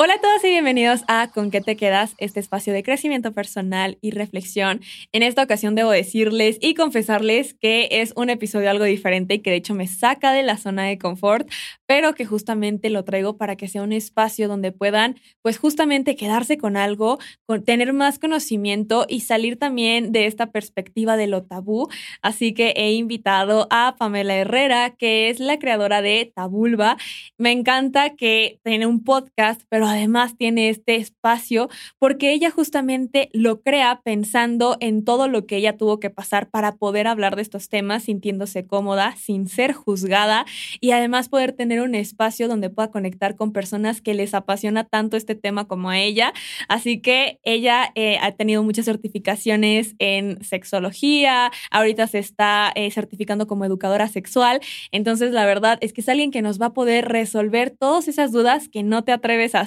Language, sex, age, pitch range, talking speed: Spanish, female, 20-39, 205-240 Hz, 180 wpm